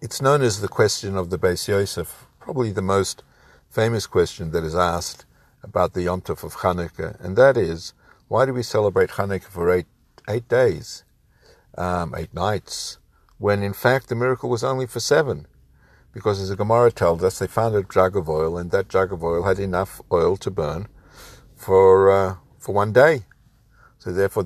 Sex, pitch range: male, 90-115 Hz